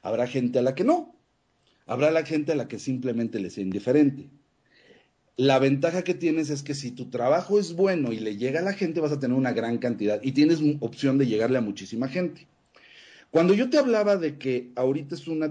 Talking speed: 215 wpm